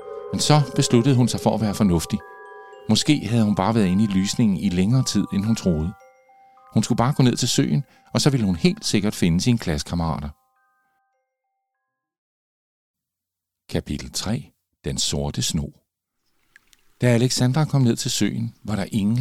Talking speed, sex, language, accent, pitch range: 165 wpm, male, Danish, native, 85-125 Hz